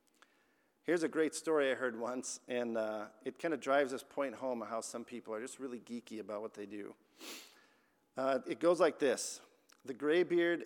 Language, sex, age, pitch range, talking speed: English, male, 50-69, 125-160 Hz, 195 wpm